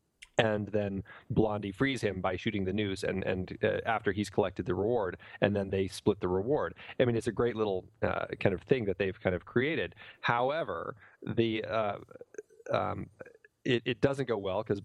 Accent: American